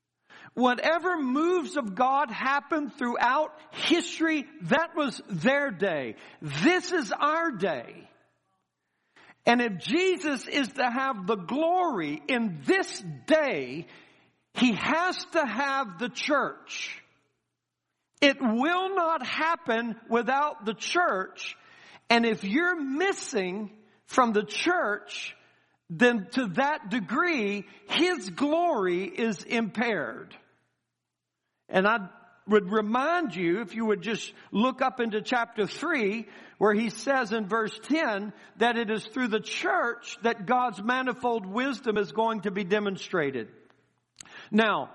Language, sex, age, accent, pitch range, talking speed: English, male, 50-69, American, 210-285 Hz, 120 wpm